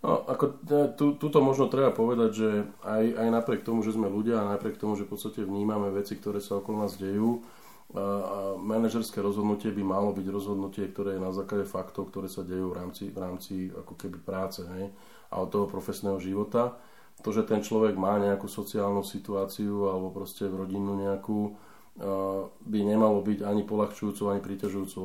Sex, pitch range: male, 95-105 Hz